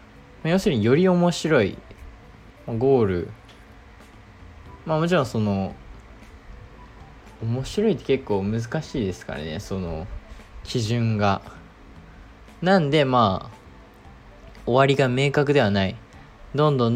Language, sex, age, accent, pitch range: Japanese, male, 20-39, native, 95-145 Hz